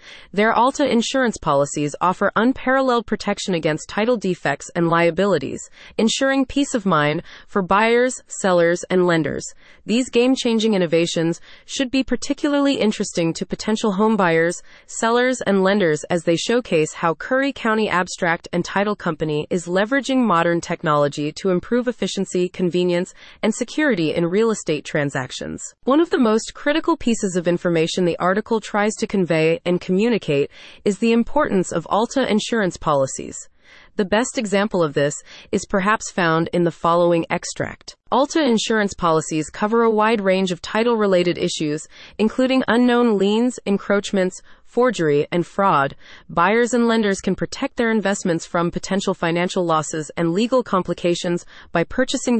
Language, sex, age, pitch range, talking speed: English, female, 30-49, 170-230 Hz, 145 wpm